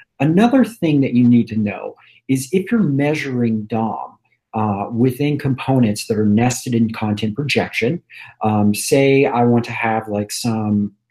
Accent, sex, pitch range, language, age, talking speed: American, male, 110-145 Hz, English, 40-59, 155 wpm